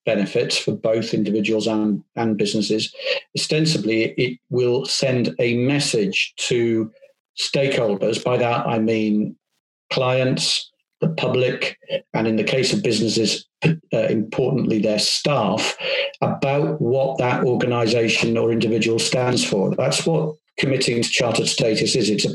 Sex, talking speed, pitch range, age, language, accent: male, 130 wpm, 110-135 Hz, 50-69, English, British